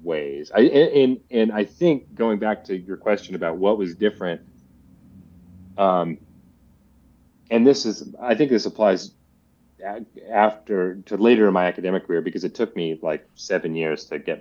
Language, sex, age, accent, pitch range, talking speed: English, male, 30-49, American, 90-110 Hz, 160 wpm